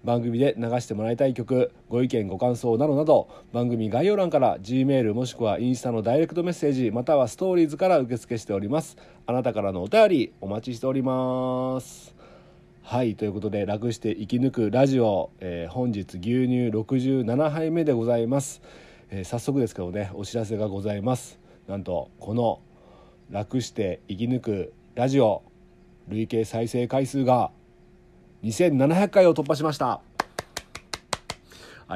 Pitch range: 110-135 Hz